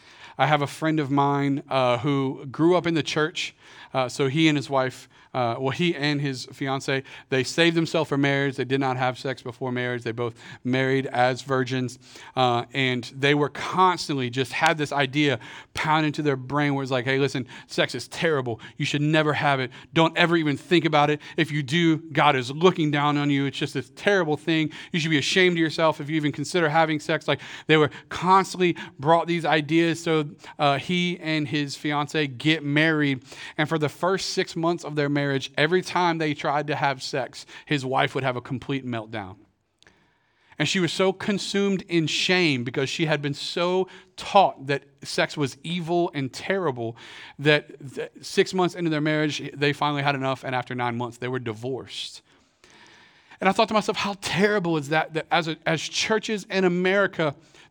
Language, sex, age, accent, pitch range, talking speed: English, male, 40-59, American, 135-165 Hz, 200 wpm